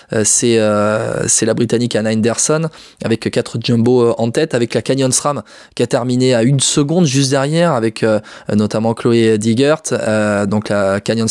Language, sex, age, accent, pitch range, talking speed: French, male, 20-39, French, 110-135 Hz, 175 wpm